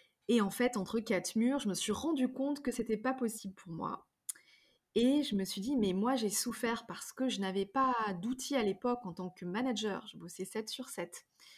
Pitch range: 195-255 Hz